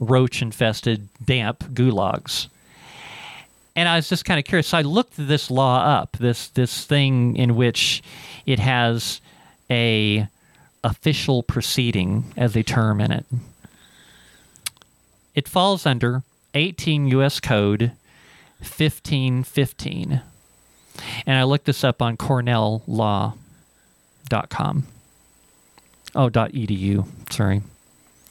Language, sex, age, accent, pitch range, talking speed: English, male, 40-59, American, 115-155 Hz, 105 wpm